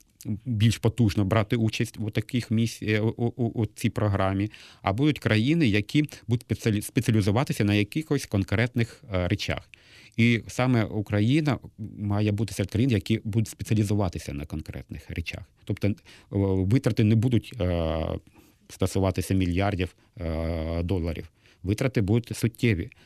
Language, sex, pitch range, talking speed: Ukrainian, male, 95-115 Hz, 120 wpm